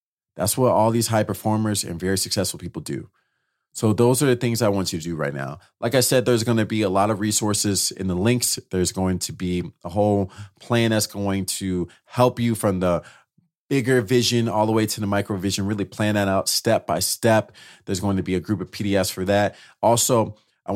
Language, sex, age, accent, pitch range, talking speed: English, male, 30-49, American, 95-115 Hz, 230 wpm